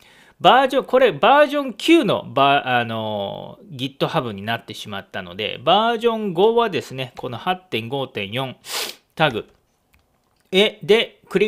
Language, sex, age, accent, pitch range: Japanese, male, 40-59, native, 130-200 Hz